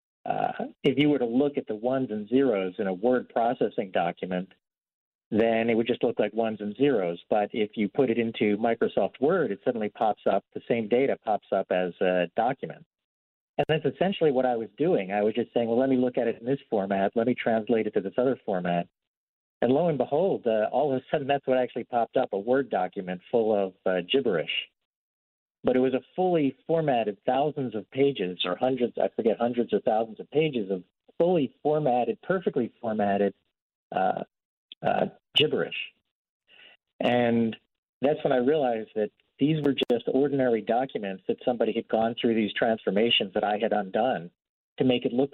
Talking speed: 195 wpm